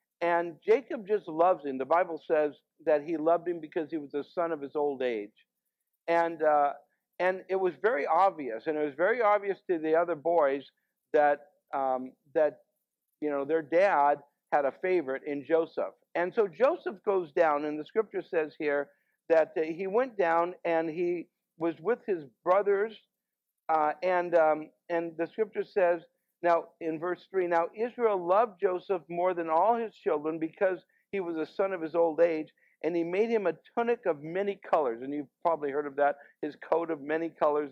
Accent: American